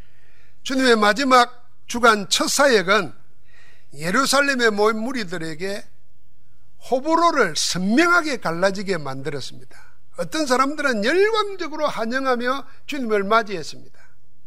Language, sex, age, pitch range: Korean, male, 60-79, 155-245 Hz